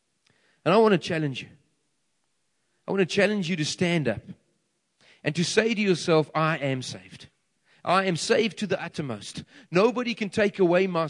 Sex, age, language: male, 40-59, English